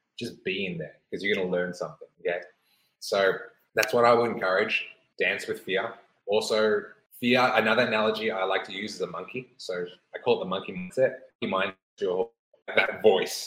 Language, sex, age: English, male, 20-39